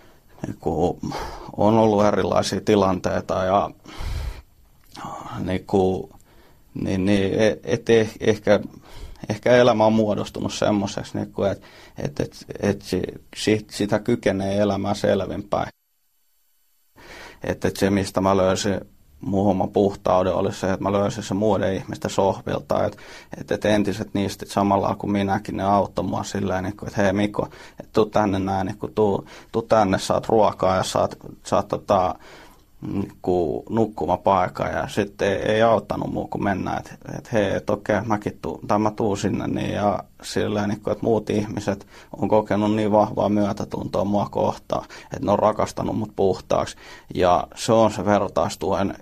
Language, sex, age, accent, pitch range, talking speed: Finnish, male, 30-49, native, 95-105 Hz, 120 wpm